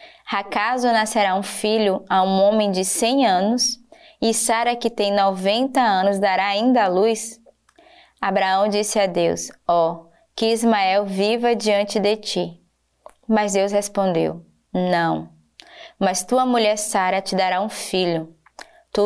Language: Portuguese